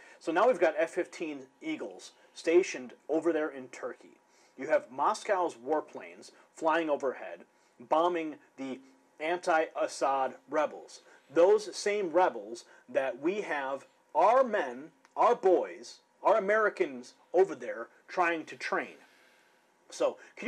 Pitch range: 135-190 Hz